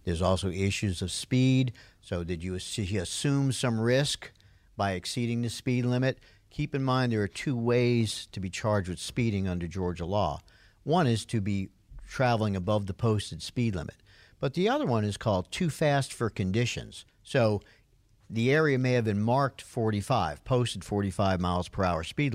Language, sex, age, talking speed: English, male, 50-69, 175 wpm